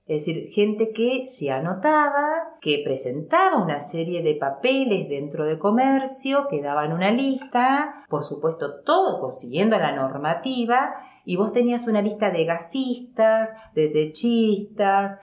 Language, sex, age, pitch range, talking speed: Spanish, female, 40-59, 145-230 Hz, 135 wpm